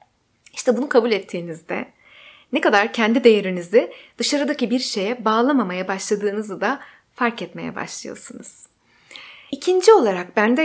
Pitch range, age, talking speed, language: 205-280 Hz, 30-49, 115 wpm, Turkish